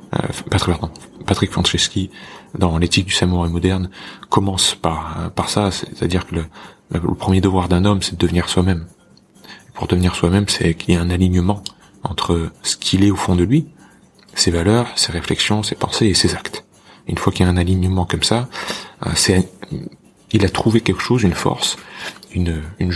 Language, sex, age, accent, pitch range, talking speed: French, male, 30-49, French, 90-105 Hz, 190 wpm